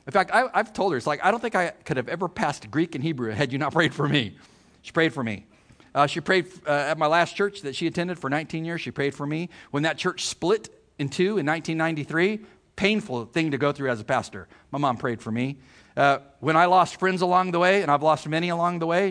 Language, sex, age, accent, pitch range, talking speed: English, male, 50-69, American, 120-165 Hz, 260 wpm